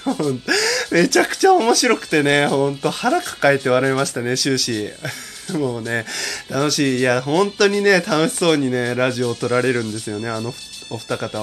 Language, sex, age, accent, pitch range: Japanese, male, 20-39, native, 115-165 Hz